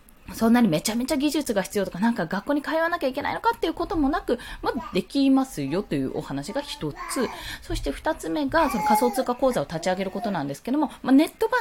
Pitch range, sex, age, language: 180-290 Hz, female, 20-39, Japanese